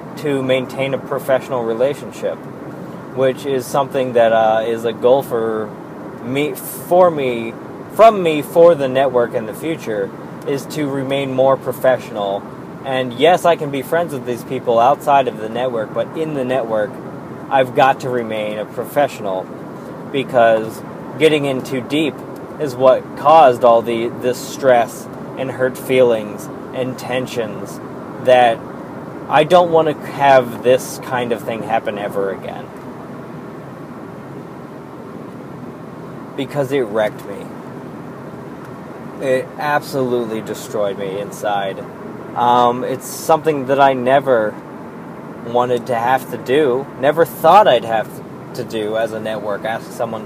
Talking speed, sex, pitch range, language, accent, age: 135 wpm, male, 115-140 Hz, English, American, 20-39